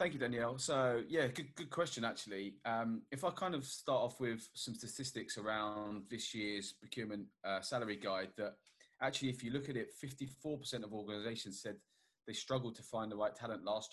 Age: 30-49